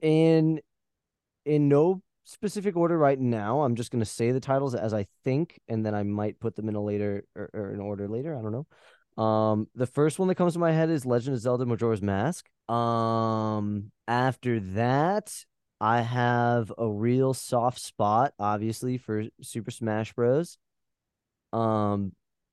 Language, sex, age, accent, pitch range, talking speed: English, male, 20-39, American, 105-130 Hz, 170 wpm